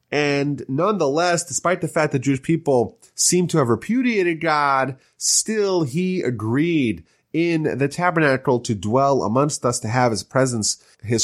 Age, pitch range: 30-49, 115-155 Hz